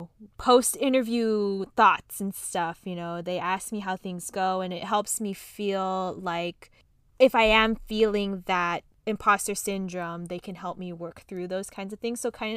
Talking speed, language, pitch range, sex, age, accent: 180 wpm, English, 180-215 Hz, female, 20-39, American